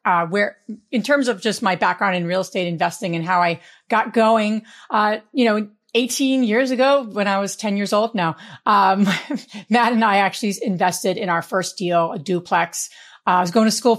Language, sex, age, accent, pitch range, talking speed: English, female, 40-59, American, 180-225 Hz, 205 wpm